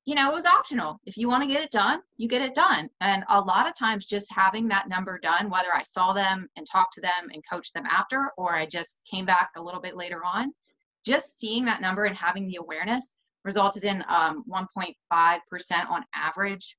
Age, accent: 20-39, American